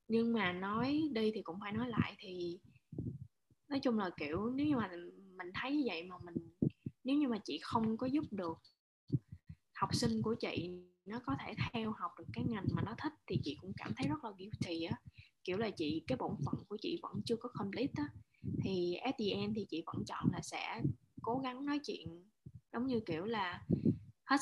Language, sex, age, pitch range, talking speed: Vietnamese, female, 20-39, 175-245 Hz, 200 wpm